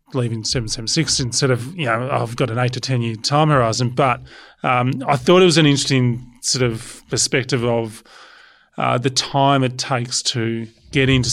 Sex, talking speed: male, 185 wpm